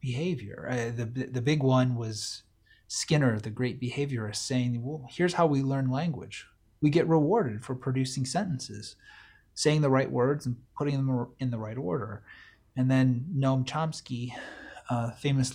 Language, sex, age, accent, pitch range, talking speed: English, male, 30-49, American, 110-140 Hz, 160 wpm